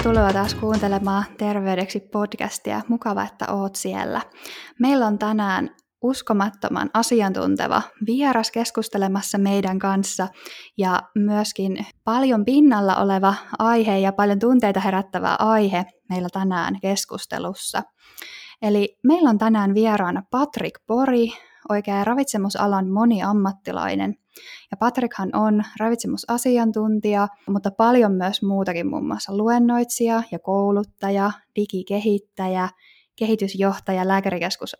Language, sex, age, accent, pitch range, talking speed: Finnish, female, 10-29, native, 190-225 Hz, 100 wpm